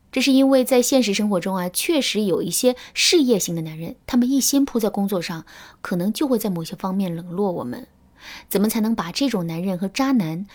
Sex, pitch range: female, 180-240 Hz